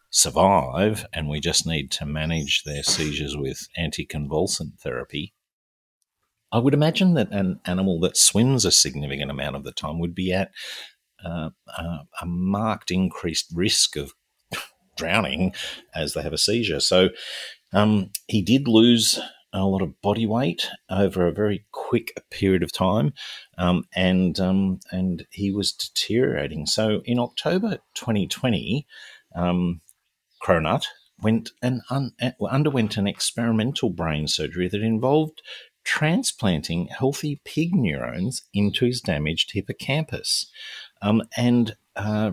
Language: English